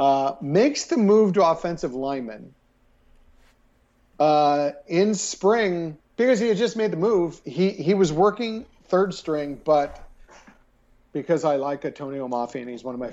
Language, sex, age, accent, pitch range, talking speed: English, male, 50-69, American, 140-190 Hz, 155 wpm